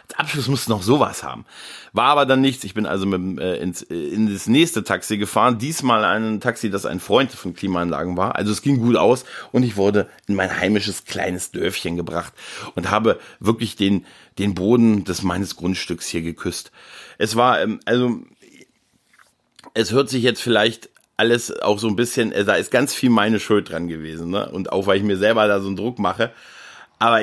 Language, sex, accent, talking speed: German, male, German, 190 wpm